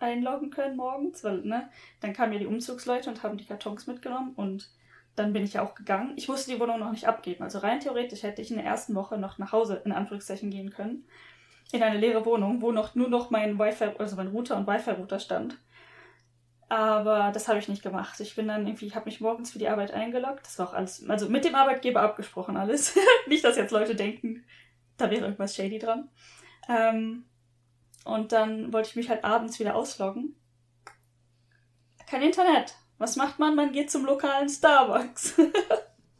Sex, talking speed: female, 200 wpm